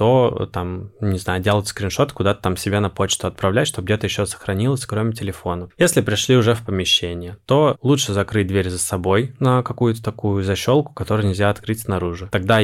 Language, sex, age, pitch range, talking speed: Russian, male, 20-39, 95-115 Hz, 180 wpm